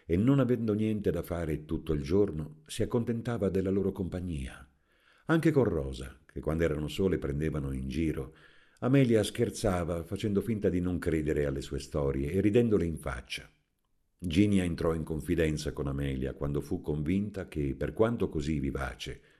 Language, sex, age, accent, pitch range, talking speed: Italian, male, 50-69, native, 70-105 Hz, 160 wpm